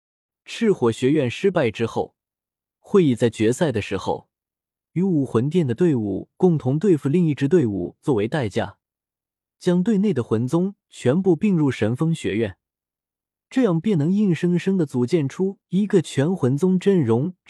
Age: 20-39